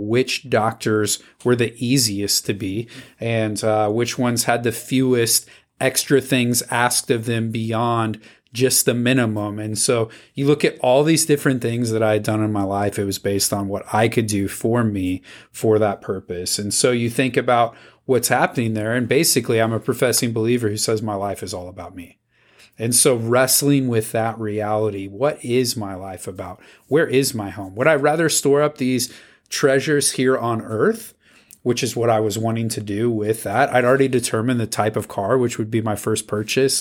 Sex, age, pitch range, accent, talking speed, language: male, 40-59, 105-130 Hz, American, 200 wpm, English